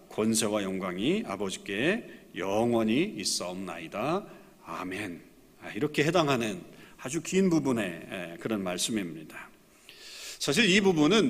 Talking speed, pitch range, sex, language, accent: 85 wpm, 110-155 Hz, male, English, Korean